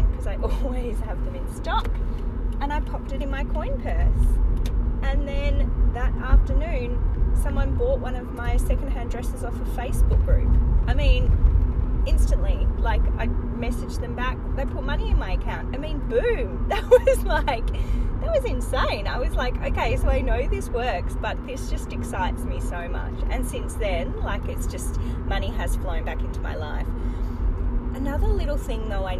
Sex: female